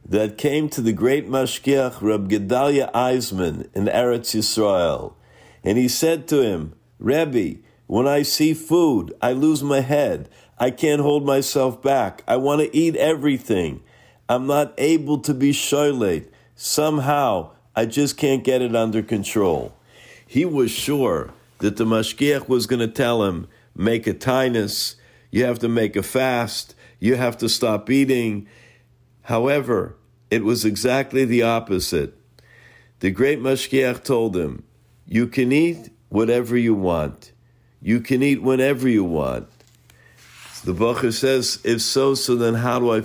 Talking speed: 150 wpm